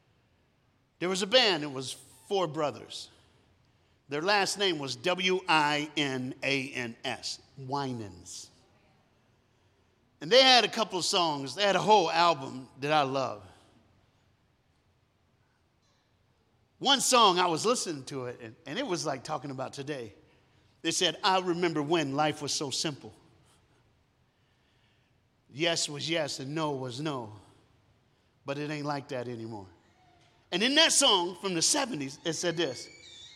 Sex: male